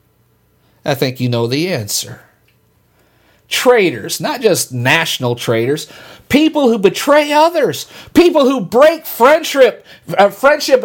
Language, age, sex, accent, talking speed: English, 50-69, male, American, 115 wpm